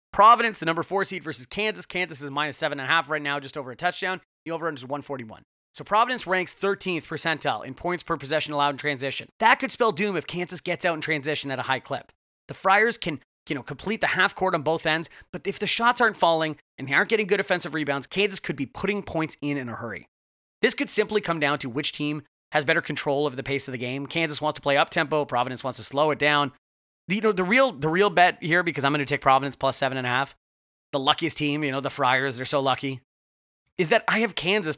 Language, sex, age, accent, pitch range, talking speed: English, male, 30-49, American, 140-185 Hz, 240 wpm